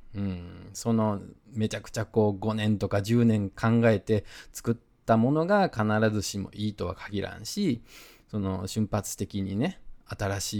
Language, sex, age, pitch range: Japanese, male, 20-39, 95-120 Hz